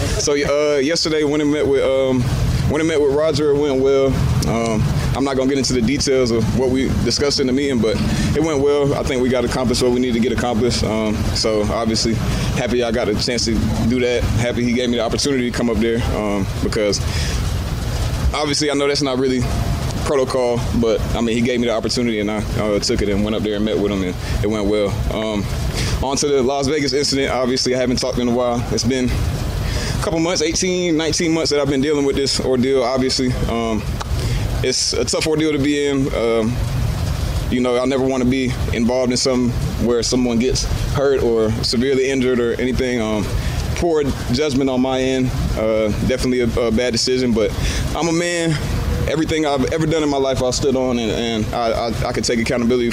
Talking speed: 220 wpm